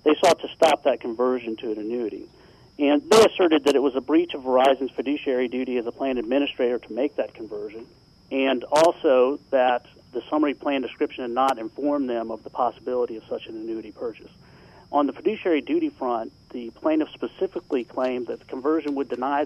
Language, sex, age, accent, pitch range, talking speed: English, male, 40-59, American, 125-155 Hz, 190 wpm